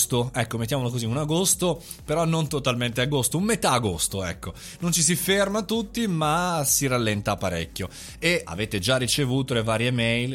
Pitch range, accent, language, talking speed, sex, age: 110-155 Hz, native, Italian, 170 wpm, male, 30-49